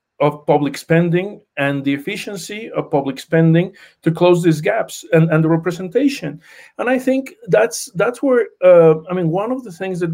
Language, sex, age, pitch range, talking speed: English, male, 40-59, 135-170 Hz, 185 wpm